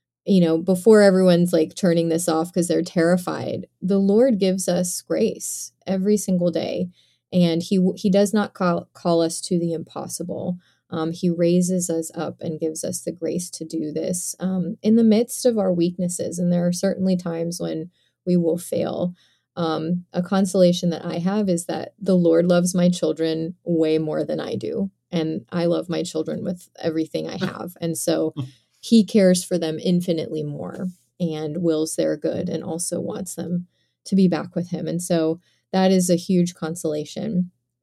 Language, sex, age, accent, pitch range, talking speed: English, female, 20-39, American, 165-185 Hz, 180 wpm